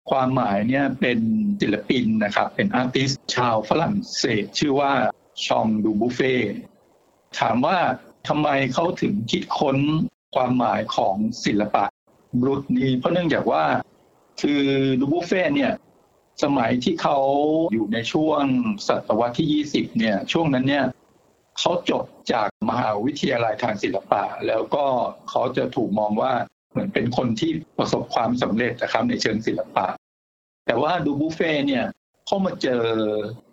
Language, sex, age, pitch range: Thai, male, 60-79, 115-155 Hz